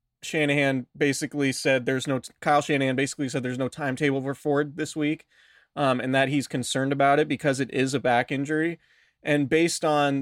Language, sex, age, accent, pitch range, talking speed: English, male, 20-39, American, 130-155 Hz, 190 wpm